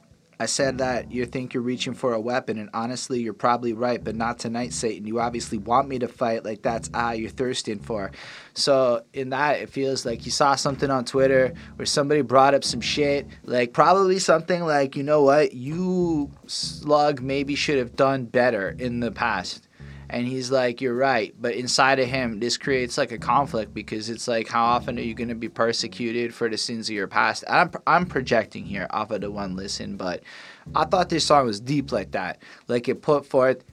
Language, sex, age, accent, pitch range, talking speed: English, male, 20-39, American, 115-135 Hz, 210 wpm